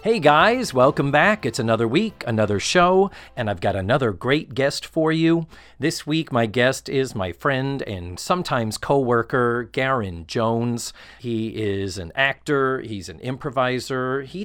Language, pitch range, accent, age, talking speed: English, 105-150 Hz, American, 40-59, 155 wpm